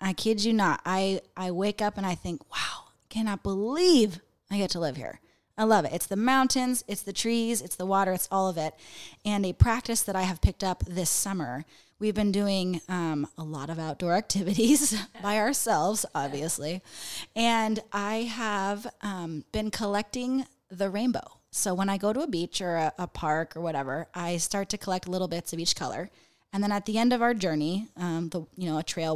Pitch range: 170-215 Hz